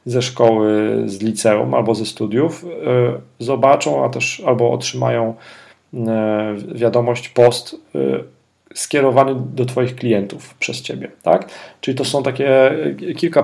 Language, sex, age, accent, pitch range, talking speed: Polish, male, 40-59, native, 120-135 Hz, 130 wpm